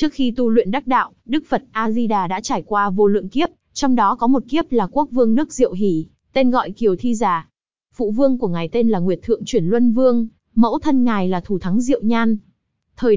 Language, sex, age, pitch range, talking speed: Vietnamese, female, 20-39, 200-255 Hz, 230 wpm